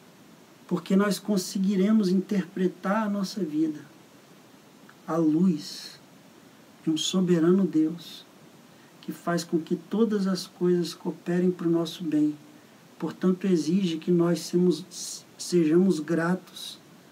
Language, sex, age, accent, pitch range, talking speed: English, male, 50-69, Brazilian, 170-210 Hz, 110 wpm